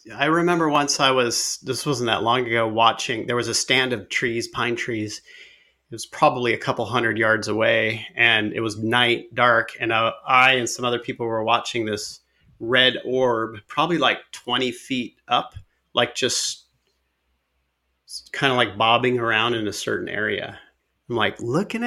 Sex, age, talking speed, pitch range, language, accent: male, 30-49, 175 wpm, 110-145 Hz, English, American